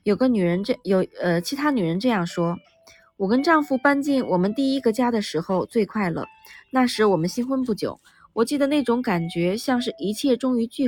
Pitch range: 180-255 Hz